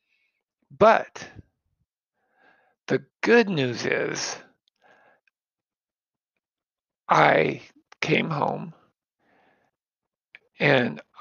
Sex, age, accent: male, 50-69, American